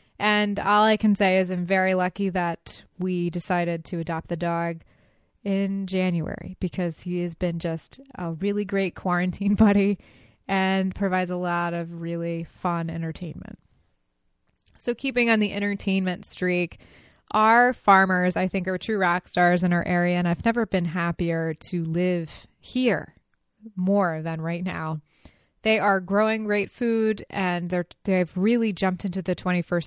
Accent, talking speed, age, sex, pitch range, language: American, 155 wpm, 20-39, female, 170-200 Hz, English